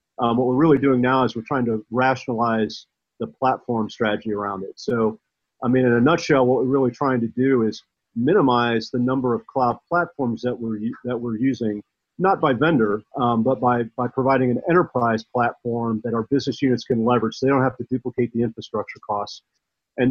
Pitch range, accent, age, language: 115-135 Hz, American, 40-59, English